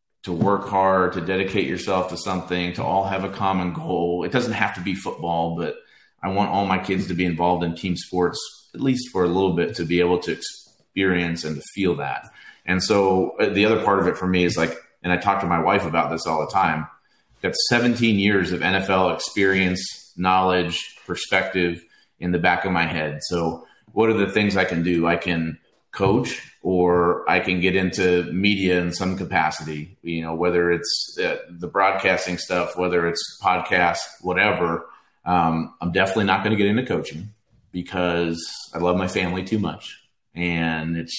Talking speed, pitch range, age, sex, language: 195 wpm, 85-95 Hz, 30-49, male, English